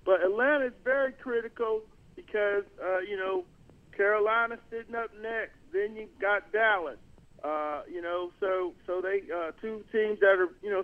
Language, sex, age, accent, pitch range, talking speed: English, male, 50-69, American, 185-230 Hz, 165 wpm